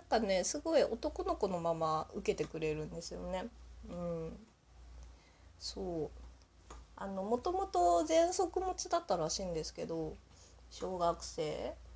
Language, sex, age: Japanese, female, 20-39